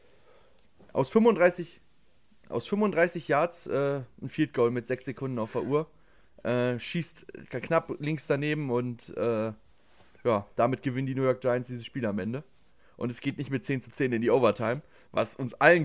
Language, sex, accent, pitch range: German, male, German, 130-165 Hz